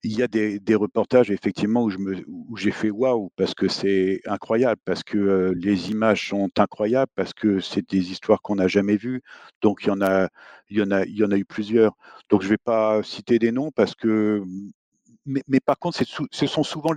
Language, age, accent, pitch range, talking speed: French, 50-69, French, 105-125 Hz, 245 wpm